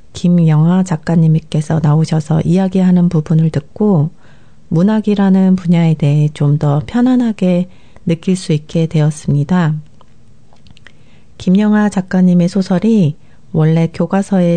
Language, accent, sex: Korean, native, female